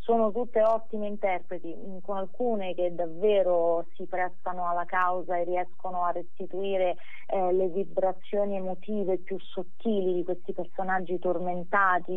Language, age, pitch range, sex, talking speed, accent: Italian, 30-49, 180-220 Hz, female, 130 wpm, native